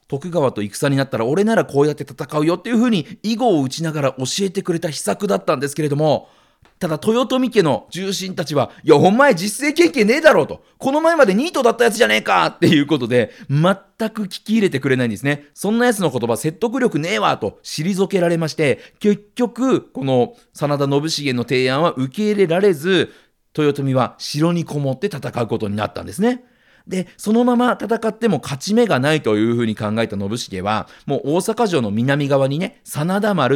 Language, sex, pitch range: Japanese, male, 135-215 Hz